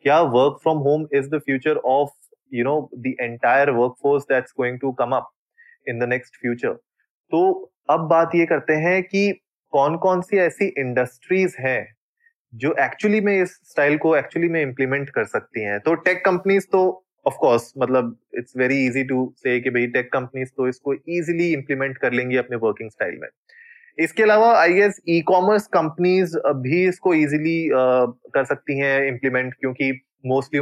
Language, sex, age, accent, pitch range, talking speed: Hindi, male, 20-39, native, 130-170 Hz, 165 wpm